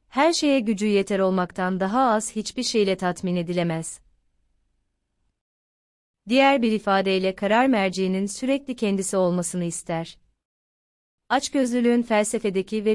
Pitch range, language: 180-220 Hz, Turkish